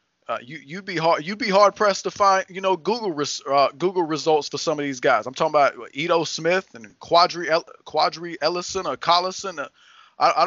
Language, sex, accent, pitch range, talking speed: English, male, American, 150-190 Hz, 210 wpm